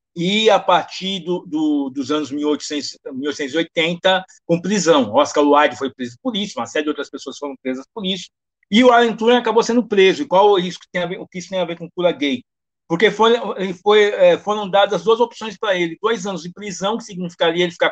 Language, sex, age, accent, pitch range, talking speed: Portuguese, male, 50-69, Brazilian, 165-225 Hz, 225 wpm